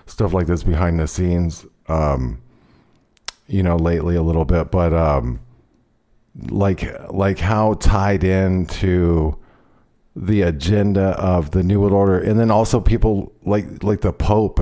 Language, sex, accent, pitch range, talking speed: English, male, American, 85-105 Hz, 150 wpm